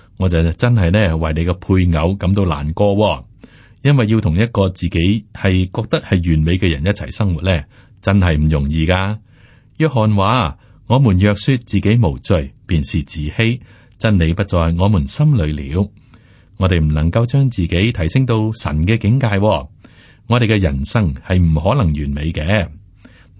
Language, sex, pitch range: Chinese, male, 85-115 Hz